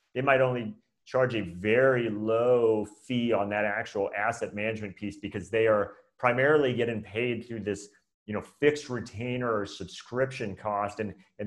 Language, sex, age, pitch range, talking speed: English, male, 30-49, 105-130 Hz, 155 wpm